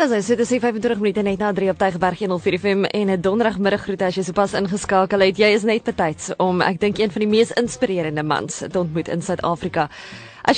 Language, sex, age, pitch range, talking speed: English, female, 20-39, 175-215 Hz, 205 wpm